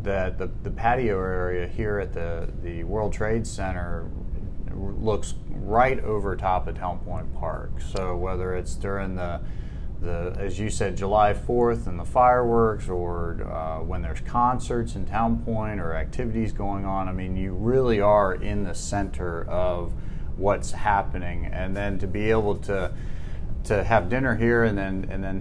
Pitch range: 90-105 Hz